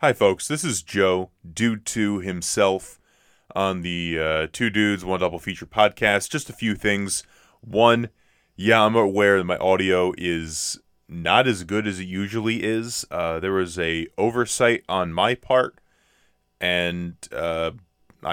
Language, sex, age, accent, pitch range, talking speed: English, male, 20-39, American, 90-110 Hz, 150 wpm